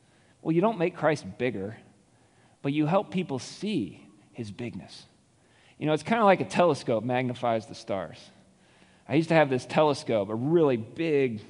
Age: 30-49